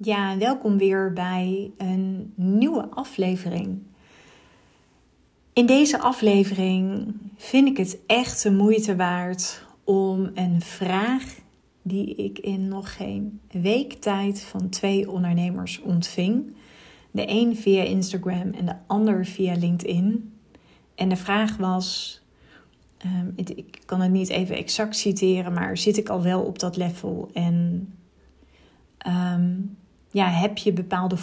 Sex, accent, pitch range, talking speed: female, Dutch, 180-205 Hz, 125 wpm